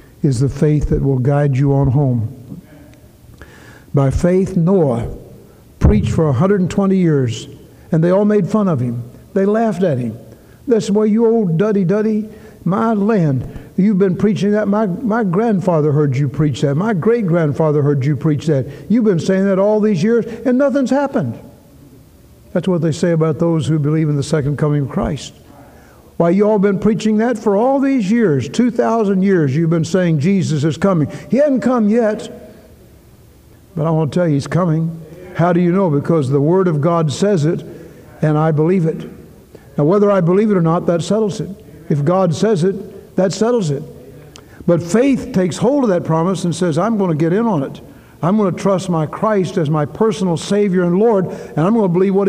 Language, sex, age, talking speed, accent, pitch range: English, male, 60-79, 195 wpm, American, 155-205 Hz